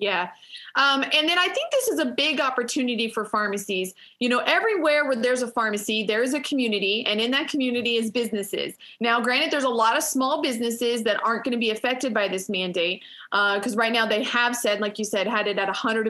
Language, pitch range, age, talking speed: English, 210-250 Hz, 30-49, 225 wpm